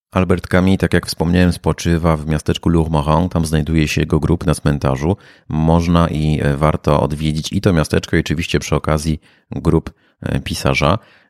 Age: 30-49